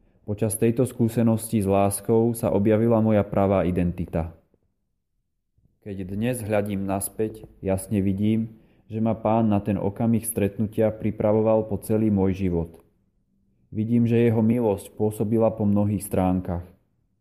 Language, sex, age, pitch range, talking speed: Slovak, male, 30-49, 100-110 Hz, 125 wpm